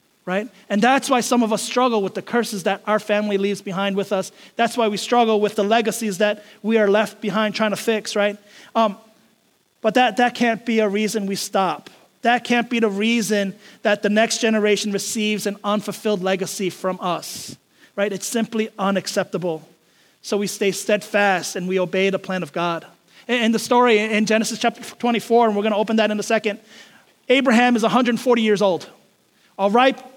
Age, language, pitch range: 30-49, English, 205-245 Hz